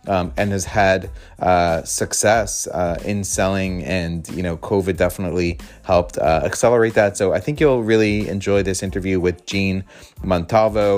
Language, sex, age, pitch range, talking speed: English, male, 30-49, 90-100 Hz, 160 wpm